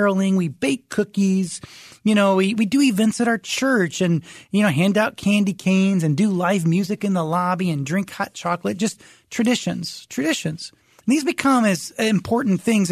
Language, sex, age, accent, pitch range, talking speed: English, male, 30-49, American, 170-215 Hz, 180 wpm